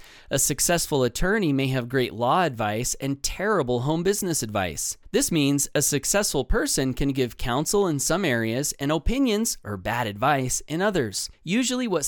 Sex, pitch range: male, 135-190 Hz